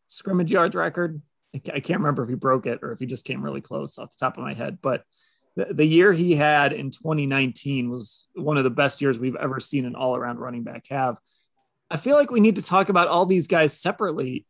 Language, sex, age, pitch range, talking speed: English, male, 30-49, 135-185 Hz, 235 wpm